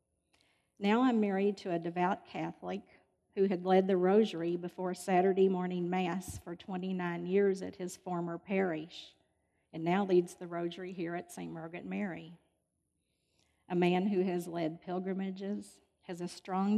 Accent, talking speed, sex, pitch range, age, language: American, 150 wpm, female, 170-200 Hz, 50-69, English